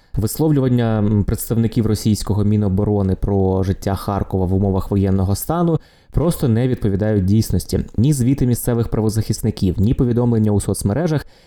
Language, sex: Ukrainian, male